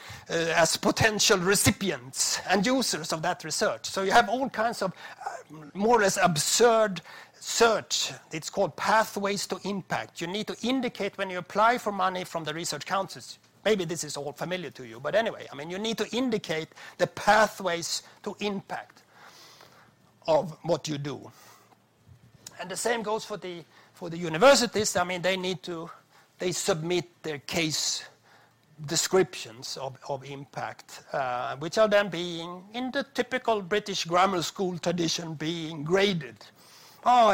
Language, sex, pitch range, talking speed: English, male, 160-210 Hz, 160 wpm